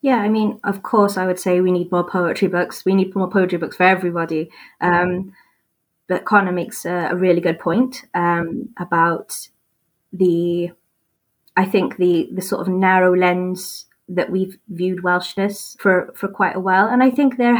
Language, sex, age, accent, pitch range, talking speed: English, female, 20-39, British, 180-200 Hz, 180 wpm